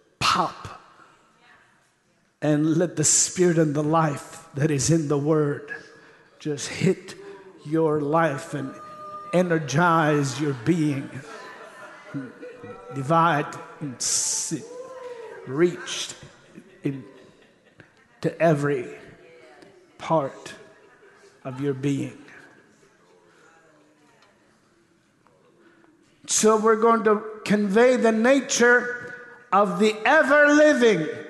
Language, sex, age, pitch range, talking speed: English, male, 60-79, 160-225 Hz, 80 wpm